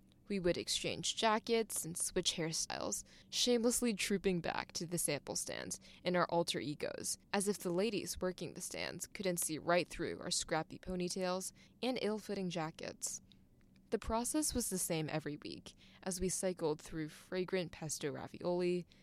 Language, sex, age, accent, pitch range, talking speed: English, female, 20-39, American, 165-200 Hz, 155 wpm